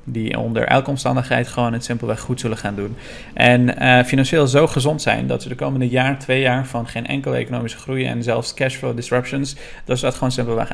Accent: Dutch